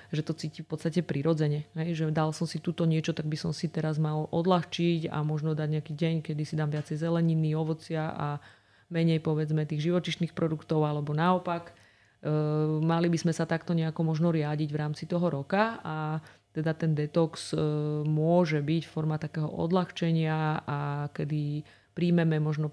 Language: Slovak